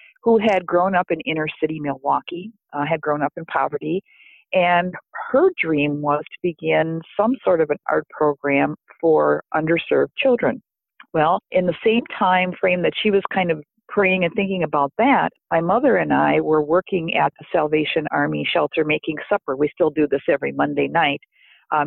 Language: English